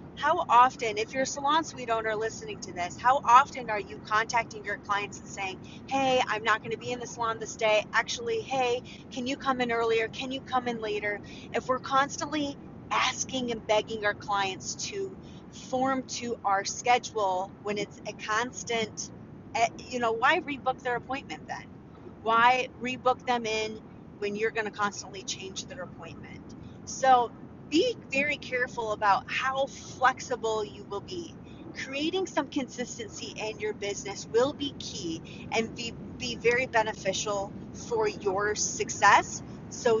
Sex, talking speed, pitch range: female, 160 wpm, 215-260 Hz